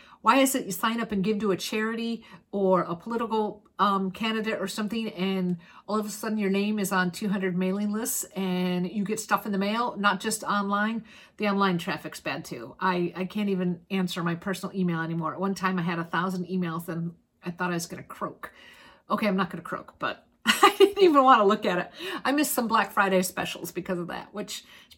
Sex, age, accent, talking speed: female, 50-69, American, 225 wpm